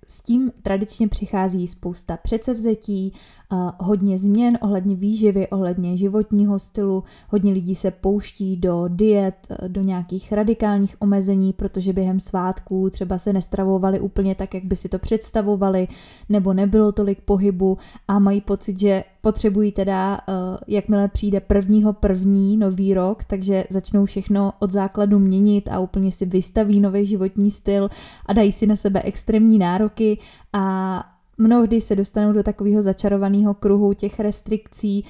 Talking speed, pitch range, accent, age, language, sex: 140 wpm, 190-205 Hz, native, 20-39, Czech, female